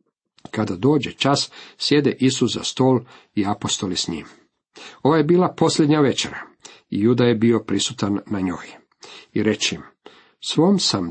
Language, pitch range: Croatian, 110-140 Hz